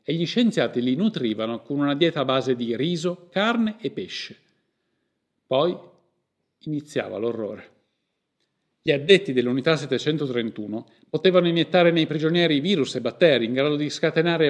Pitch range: 125-170 Hz